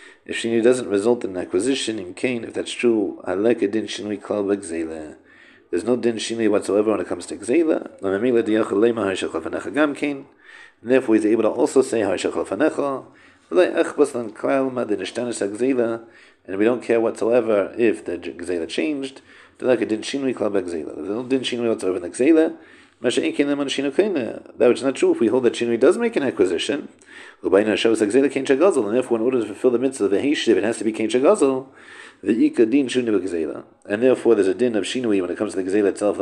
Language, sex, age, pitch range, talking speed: English, male, 50-69, 110-140 Hz, 170 wpm